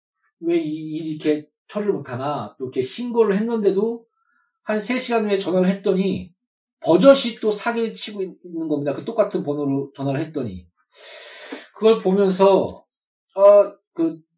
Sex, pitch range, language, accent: male, 140-200 Hz, Korean, native